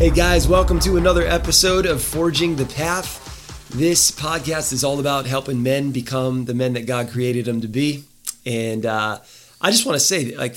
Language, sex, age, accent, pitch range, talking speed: English, male, 20-39, American, 115-140 Hz, 195 wpm